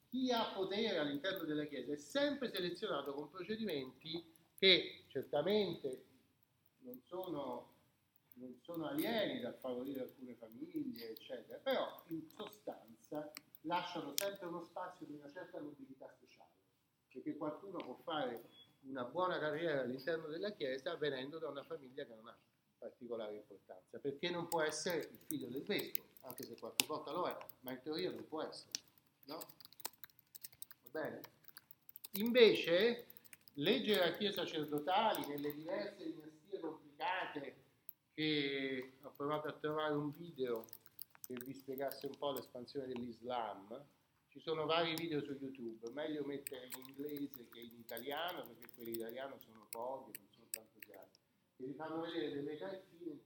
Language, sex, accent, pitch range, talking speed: Italian, male, native, 135-170 Hz, 140 wpm